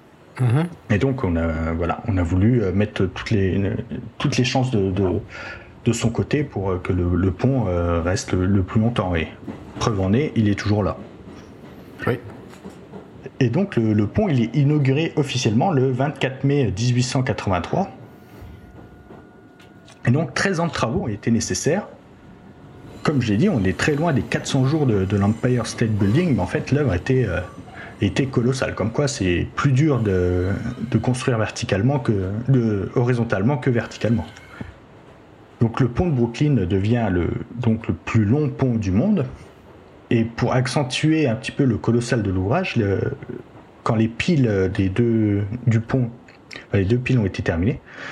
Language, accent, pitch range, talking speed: French, French, 100-130 Hz, 165 wpm